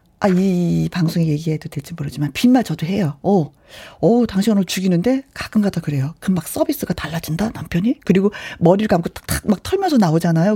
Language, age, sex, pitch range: Korean, 40-59, female, 180-265 Hz